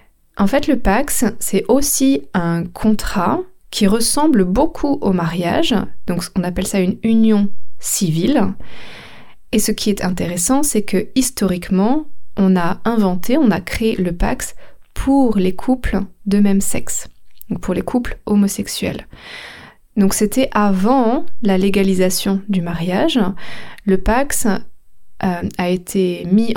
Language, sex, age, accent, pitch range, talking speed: French, female, 20-39, French, 190-240 Hz, 135 wpm